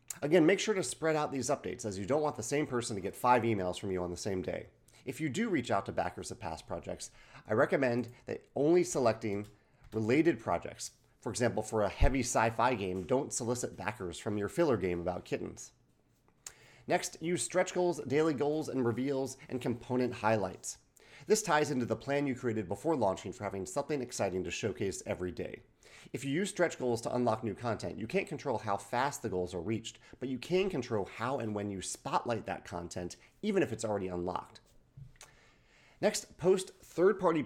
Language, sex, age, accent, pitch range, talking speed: English, male, 30-49, American, 105-145 Hz, 195 wpm